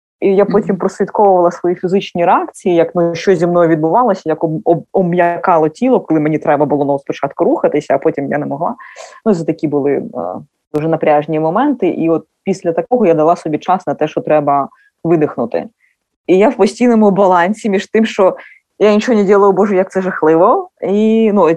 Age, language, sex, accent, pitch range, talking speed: 20-39, Ukrainian, female, native, 155-190 Hz, 195 wpm